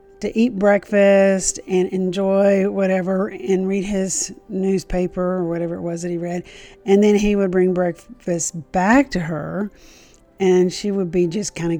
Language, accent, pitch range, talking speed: English, American, 175-195 Hz, 170 wpm